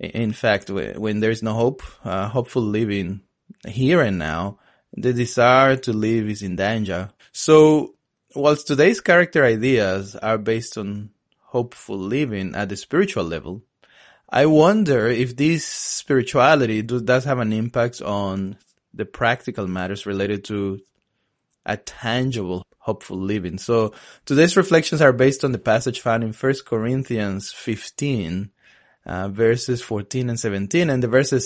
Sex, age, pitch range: male, 20-39, 100-130 Hz